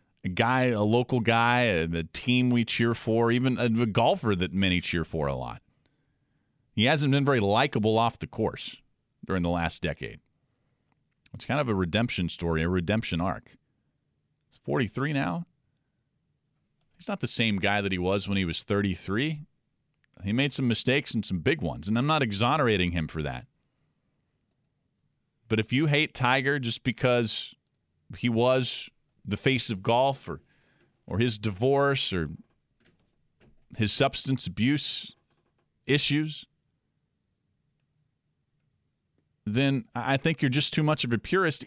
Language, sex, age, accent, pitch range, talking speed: English, male, 40-59, American, 100-135 Hz, 150 wpm